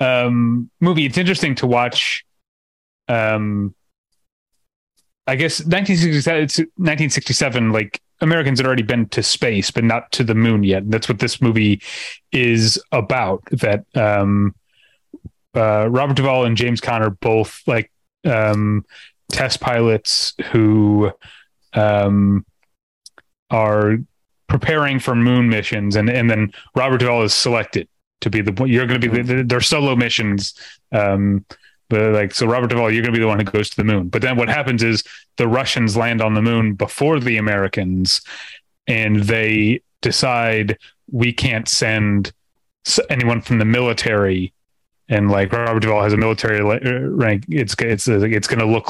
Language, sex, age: English, male, 30-49